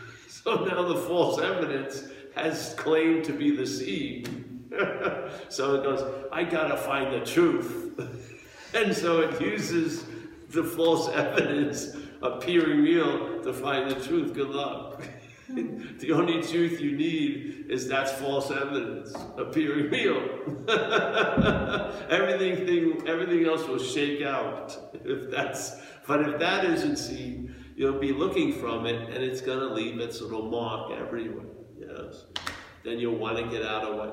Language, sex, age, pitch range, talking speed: English, male, 50-69, 115-170 Hz, 145 wpm